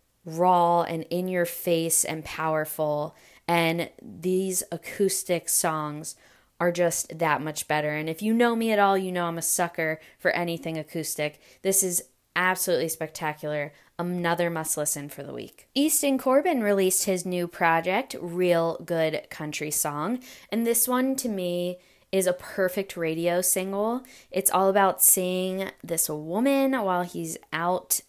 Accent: American